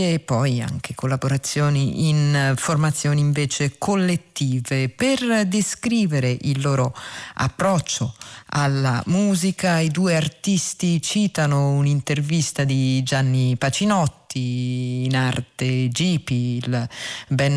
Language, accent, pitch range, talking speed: Italian, native, 135-175 Hz, 90 wpm